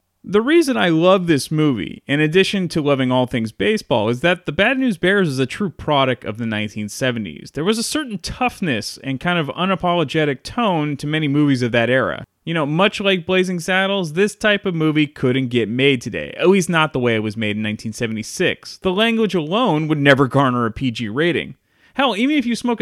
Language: English